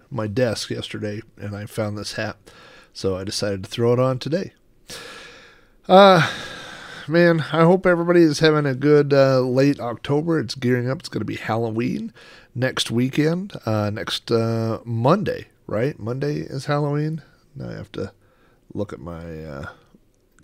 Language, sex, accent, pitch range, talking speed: English, male, American, 105-145 Hz, 160 wpm